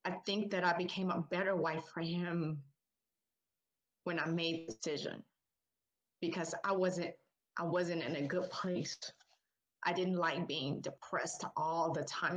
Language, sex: English, female